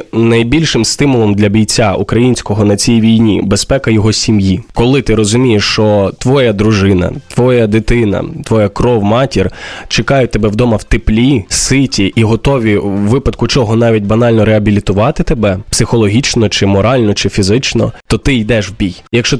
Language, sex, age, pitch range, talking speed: Ukrainian, male, 20-39, 100-115 Hz, 150 wpm